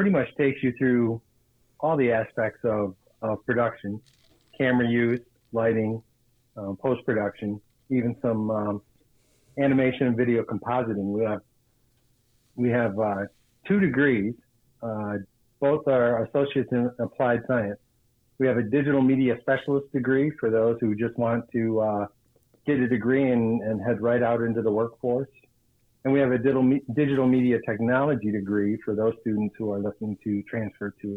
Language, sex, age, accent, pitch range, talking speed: English, male, 50-69, American, 110-125 Hz, 150 wpm